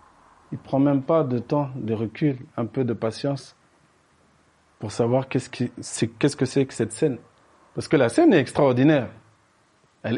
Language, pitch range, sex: French, 110-150 Hz, male